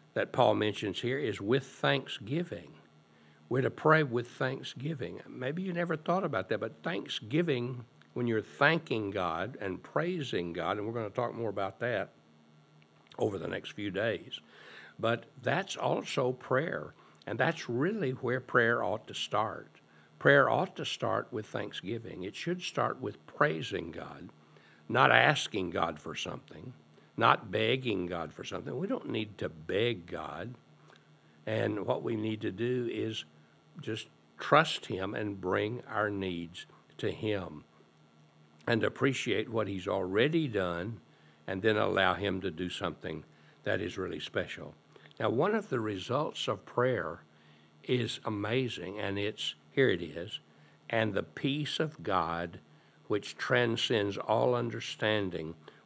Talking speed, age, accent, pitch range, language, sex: 145 wpm, 60-79, American, 85-120 Hz, English, male